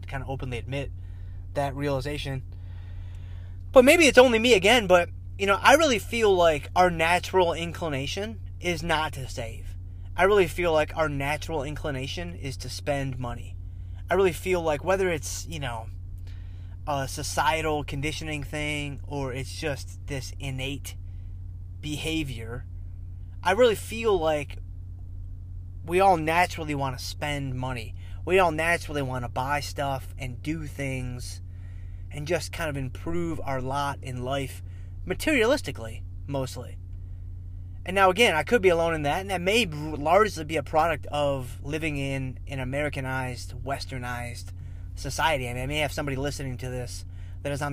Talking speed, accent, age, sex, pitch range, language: 150 wpm, American, 20-39, male, 90-145 Hz, English